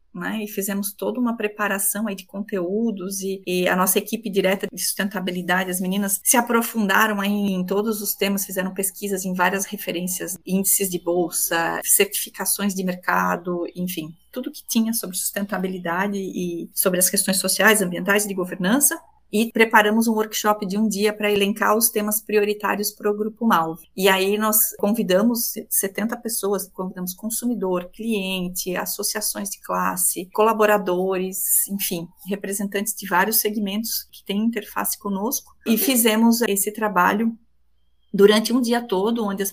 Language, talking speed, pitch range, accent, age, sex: Portuguese, 150 wpm, 190-220 Hz, Brazilian, 30-49, female